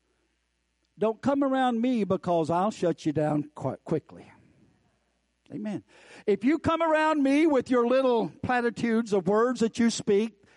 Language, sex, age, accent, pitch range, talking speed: English, male, 60-79, American, 195-300 Hz, 150 wpm